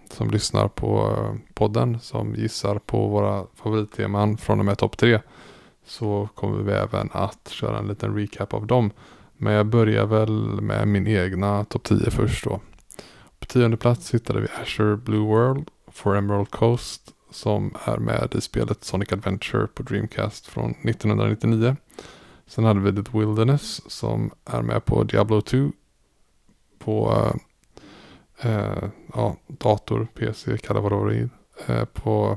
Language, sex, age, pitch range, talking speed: Swedish, male, 20-39, 105-120 Hz, 150 wpm